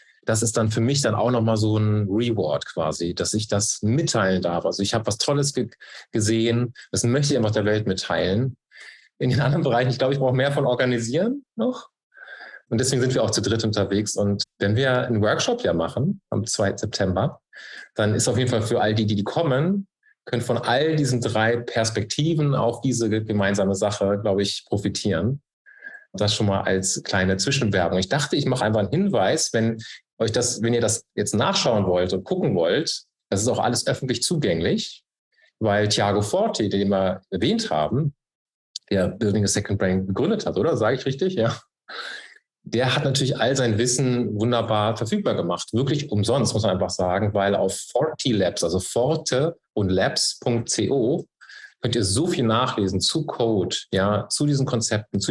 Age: 30-49